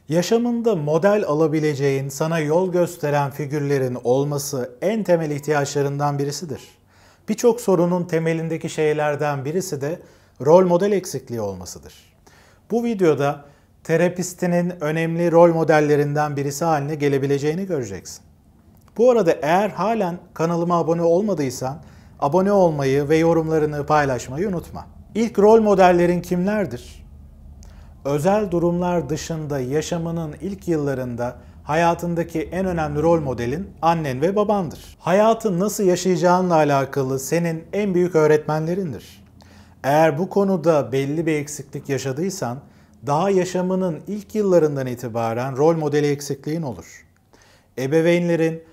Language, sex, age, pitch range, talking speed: Turkish, male, 40-59, 135-175 Hz, 110 wpm